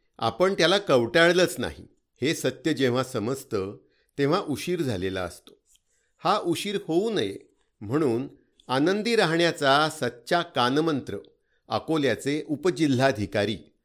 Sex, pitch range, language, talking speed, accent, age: male, 120-165 Hz, Marathi, 75 wpm, native, 50-69